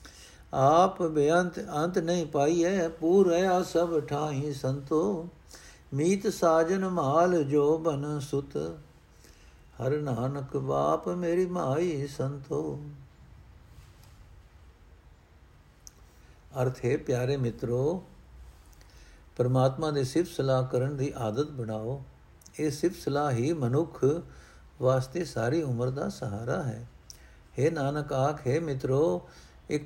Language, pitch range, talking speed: Punjabi, 110-150 Hz, 100 wpm